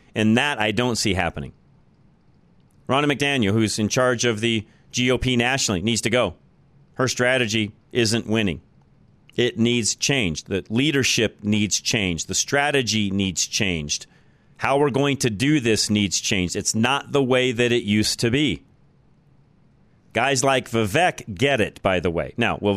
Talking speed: 160 wpm